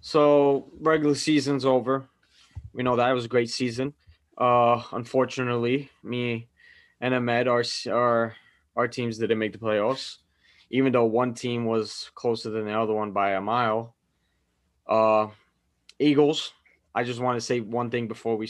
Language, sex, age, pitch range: English, male, 20-39, 110-130 Hz